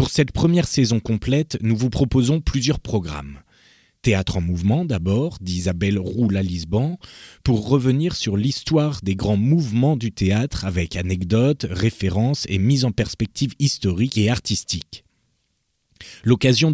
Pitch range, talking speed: 95-130 Hz, 135 wpm